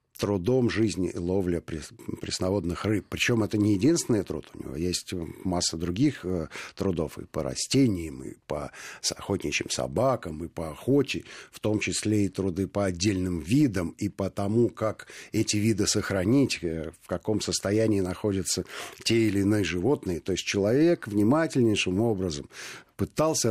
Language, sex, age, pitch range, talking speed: Russian, male, 50-69, 90-110 Hz, 145 wpm